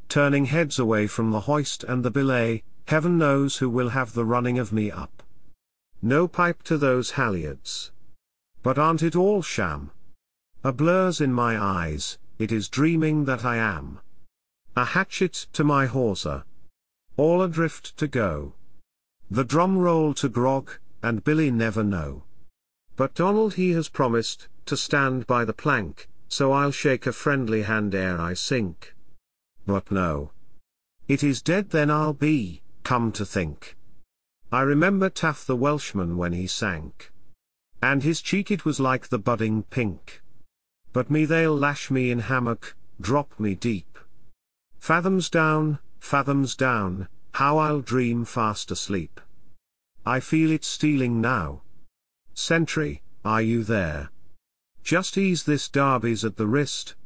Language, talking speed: English, 145 wpm